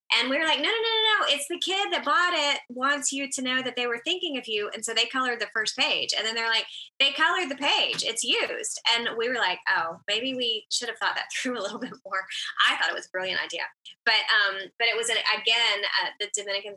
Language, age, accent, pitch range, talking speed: English, 20-39, American, 195-250 Hz, 270 wpm